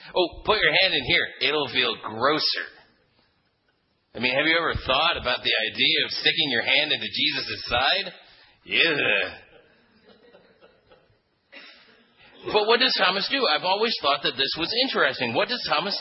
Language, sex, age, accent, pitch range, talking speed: English, male, 40-59, American, 145-230 Hz, 155 wpm